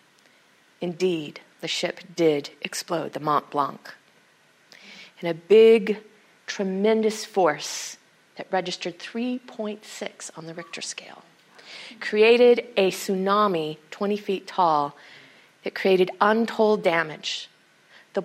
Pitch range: 170-210 Hz